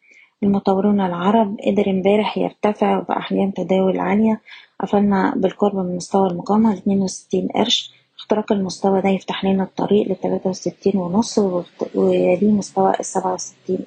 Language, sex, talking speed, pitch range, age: Arabic, female, 115 wpm, 185-210 Hz, 20-39